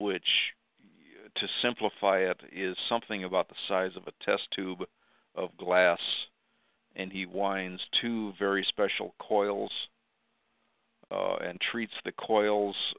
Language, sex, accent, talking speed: English, male, American, 125 wpm